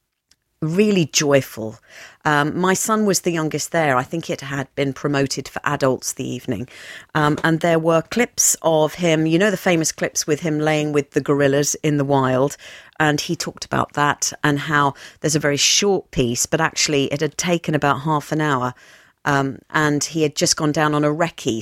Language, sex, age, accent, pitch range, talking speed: English, female, 40-59, British, 140-175 Hz, 195 wpm